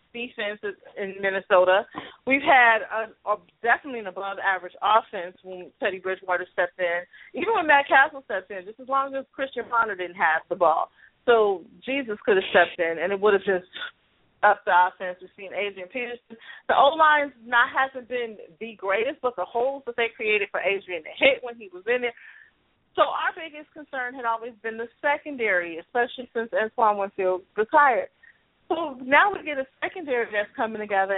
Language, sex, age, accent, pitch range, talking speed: English, female, 30-49, American, 185-265 Hz, 185 wpm